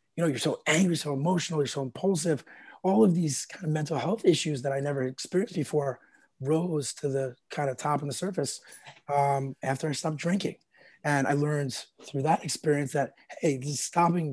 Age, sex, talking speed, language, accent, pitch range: 30-49, male, 195 wpm, English, American, 135-155 Hz